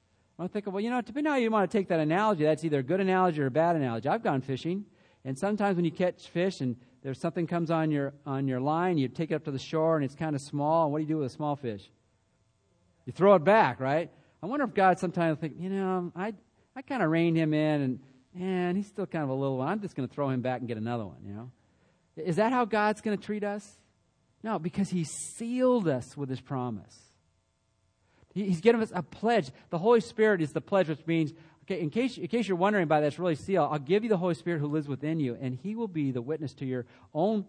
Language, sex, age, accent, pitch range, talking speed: English, male, 40-59, American, 130-185 Hz, 265 wpm